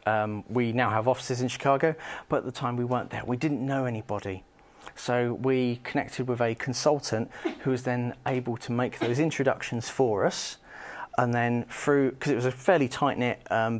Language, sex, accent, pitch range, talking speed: English, male, British, 115-130 Hz, 195 wpm